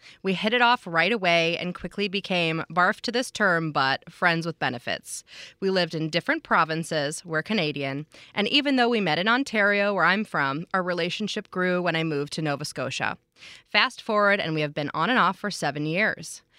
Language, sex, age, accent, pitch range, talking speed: English, female, 20-39, American, 155-200 Hz, 200 wpm